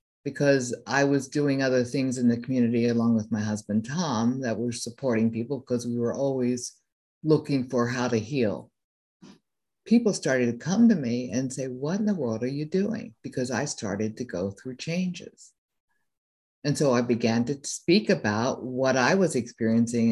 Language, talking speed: English, 180 wpm